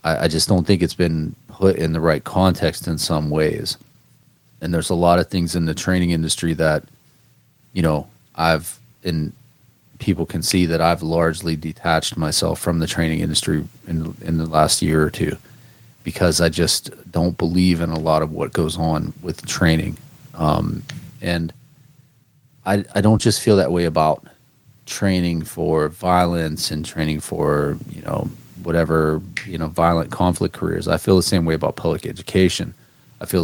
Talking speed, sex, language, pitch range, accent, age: 170 wpm, male, English, 80-95 Hz, American, 30-49